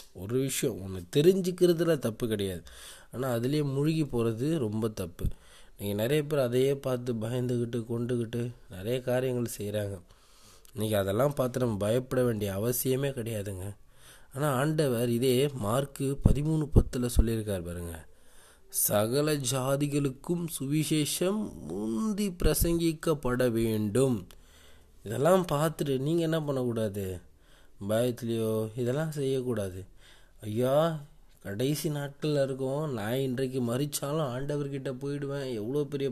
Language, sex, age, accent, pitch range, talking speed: Tamil, male, 20-39, native, 115-145 Hz, 105 wpm